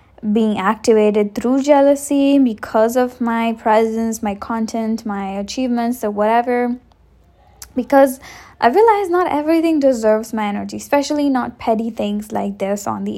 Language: English